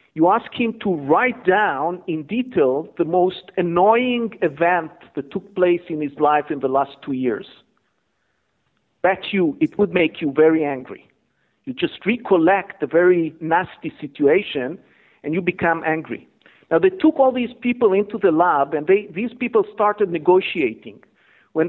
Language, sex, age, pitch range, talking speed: English, male, 50-69, 160-220 Hz, 160 wpm